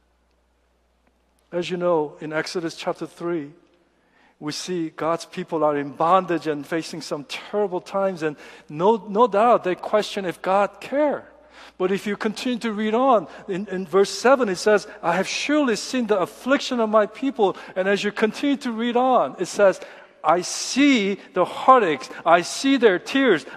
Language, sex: Korean, male